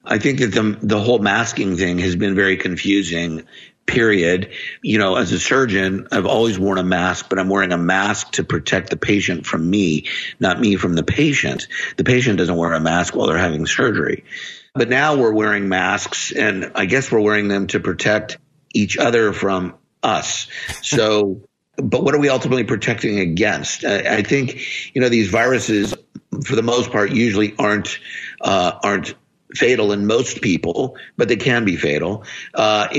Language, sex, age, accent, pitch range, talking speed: English, male, 50-69, American, 95-110 Hz, 180 wpm